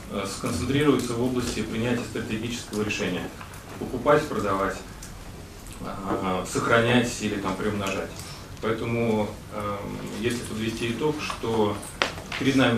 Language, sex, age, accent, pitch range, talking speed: Russian, male, 30-49, native, 100-120 Hz, 95 wpm